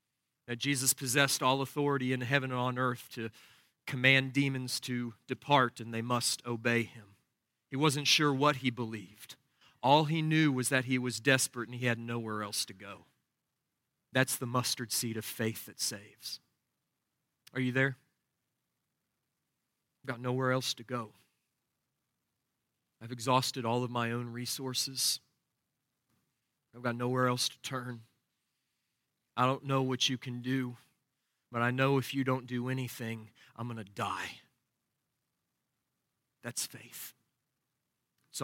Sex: male